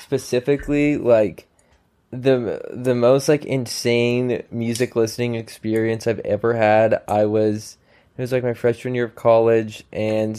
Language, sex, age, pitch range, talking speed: English, male, 20-39, 110-140 Hz, 140 wpm